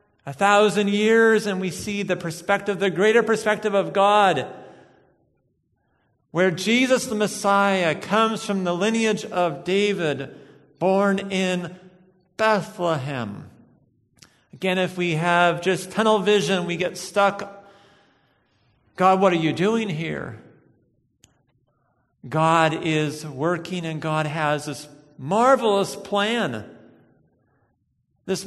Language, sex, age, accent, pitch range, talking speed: English, male, 50-69, American, 170-215 Hz, 110 wpm